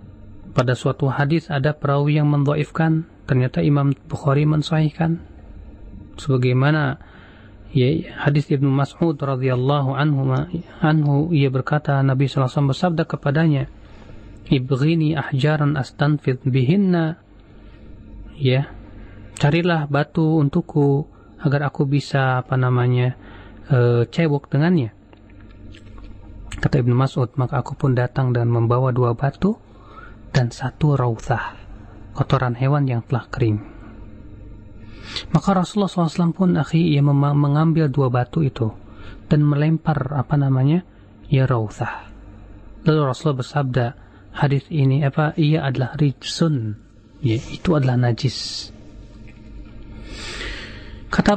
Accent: native